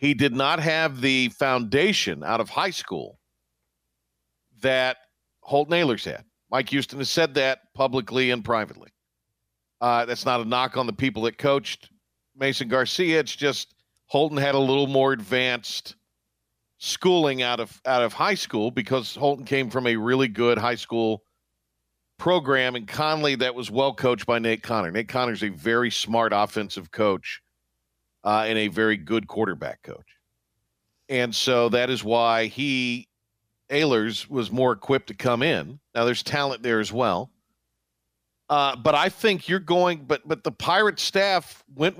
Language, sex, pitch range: English, male, 110-145 Hz